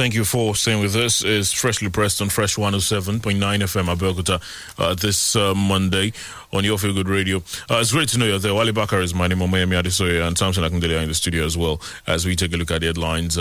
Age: 30-49